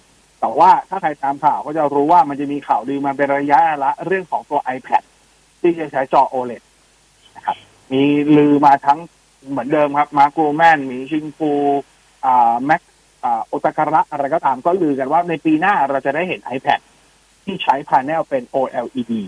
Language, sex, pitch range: Thai, male, 130-160 Hz